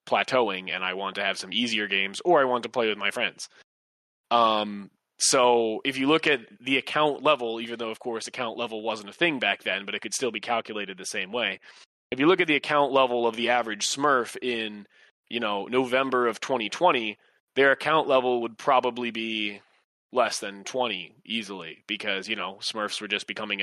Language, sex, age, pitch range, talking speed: English, male, 20-39, 110-130 Hz, 205 wpm